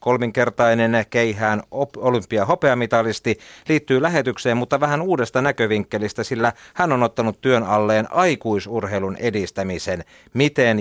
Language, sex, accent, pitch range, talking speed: Finnish, male, native, 110-135 Hz, 100 wpm